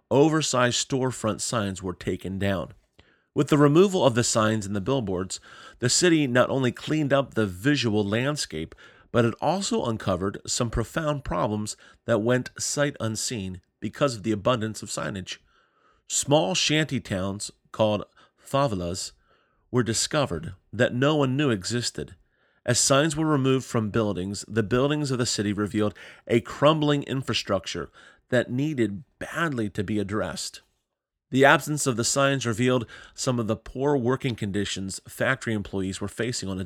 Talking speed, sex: 150 wpm, male